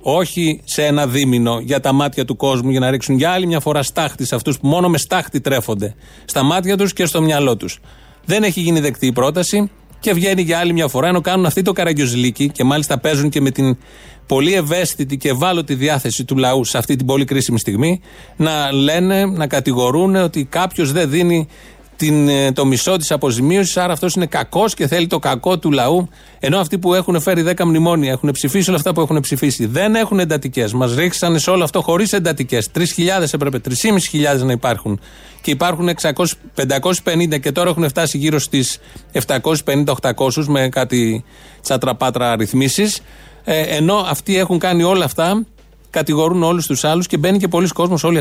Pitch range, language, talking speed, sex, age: 135-175 Hz, Greek, 185 wpm, male, 30-49